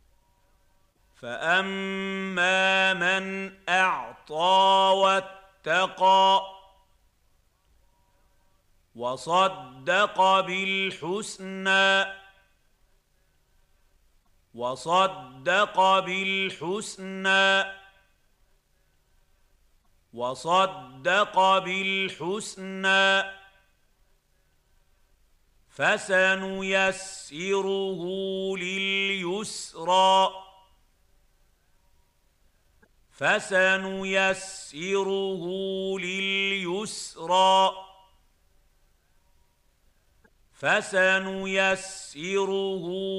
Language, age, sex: Arabic, 50-69, male